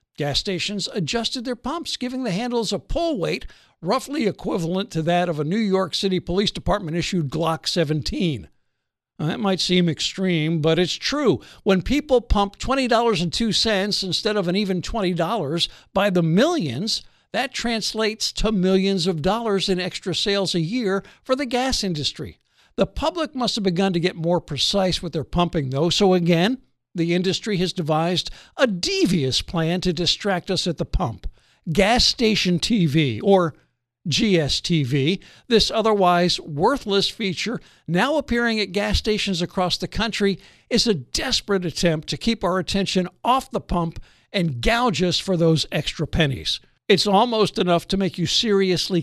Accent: American